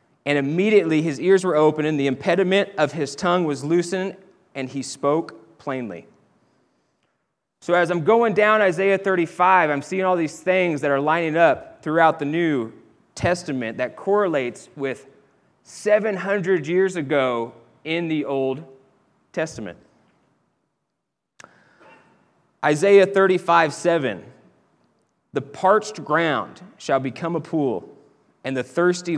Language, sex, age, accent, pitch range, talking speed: English, male, 30-49, American, 135-175 Hz, 125 wpm